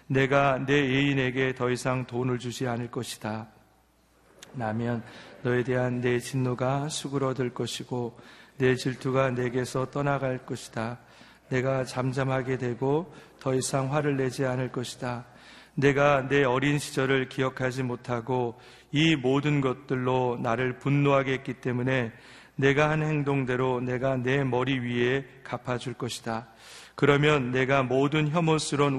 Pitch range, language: 125-140 Hz, Korean